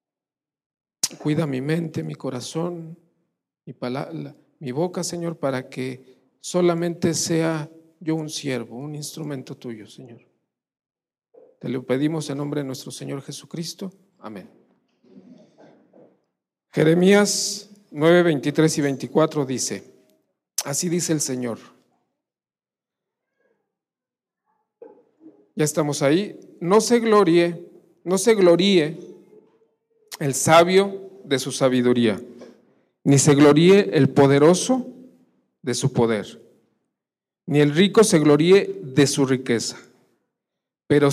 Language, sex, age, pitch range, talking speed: Spanish, male, 50-69, 140-190 Hz, 100 wpm